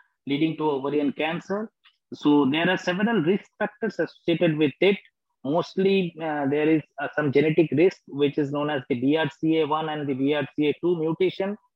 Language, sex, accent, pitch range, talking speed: English, male, Indian, 145-175 Hz, 160 wpm